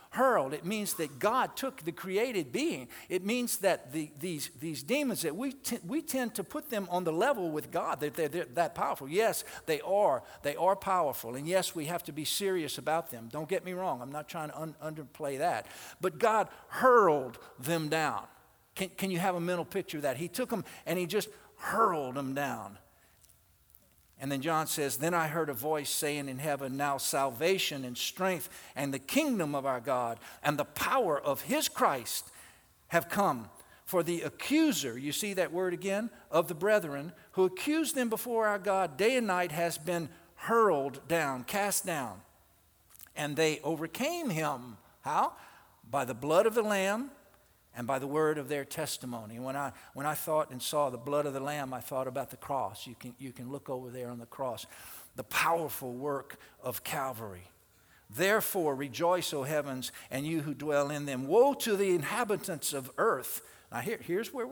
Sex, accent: male, American